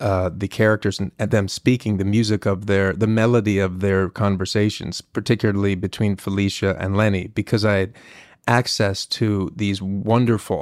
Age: 30-49